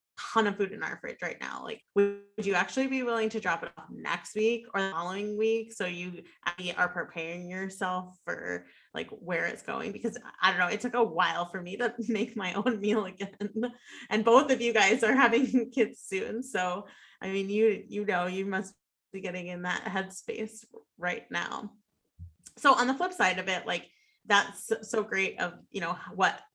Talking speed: 200 wpm